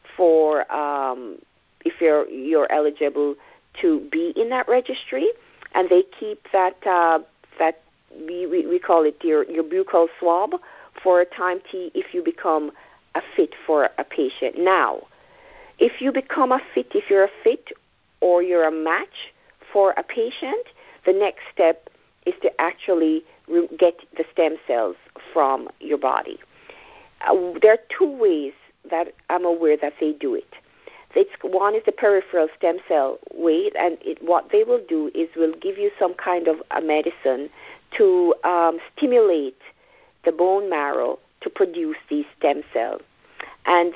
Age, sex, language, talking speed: 50-69, female, English, 155 wpm